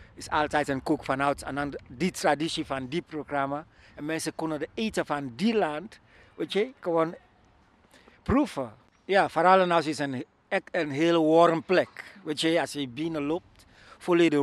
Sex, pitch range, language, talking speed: male, 130-170 Hz, Dutch, 165 wpm